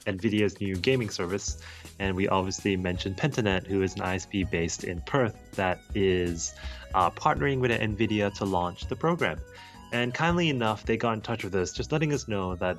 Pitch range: 90-115 Hz